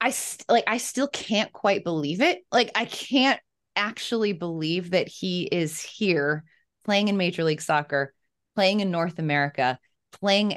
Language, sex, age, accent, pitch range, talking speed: English, female, 20-39, American, 155-205 Hz, 155 wpm